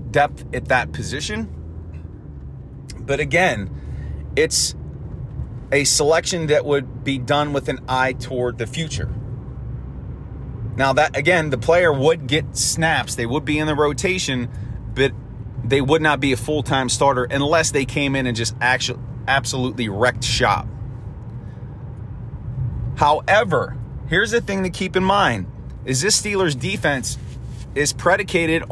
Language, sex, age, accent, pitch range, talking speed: English, male, 30-49, American, 120-145 Hz, 135 wpm